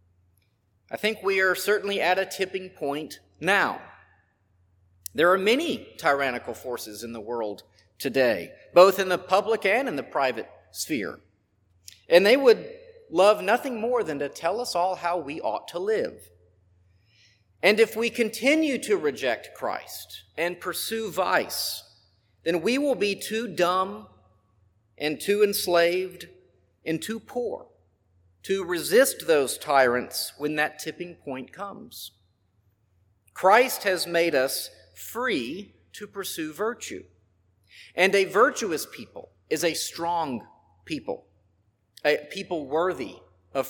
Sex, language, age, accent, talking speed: male, English, 40-59, American, 130 wpm